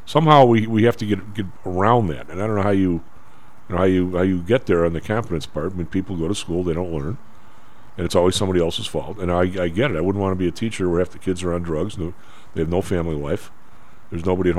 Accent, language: American, English